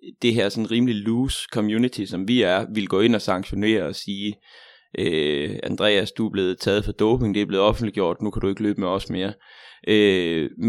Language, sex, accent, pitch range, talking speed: Danish, male, native, 100-115 Hz, 210 wpm